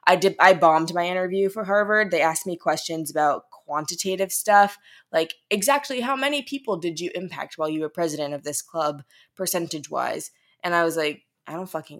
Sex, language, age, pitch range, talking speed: female, English, 20-39, 155-195 Hz, 190 wpm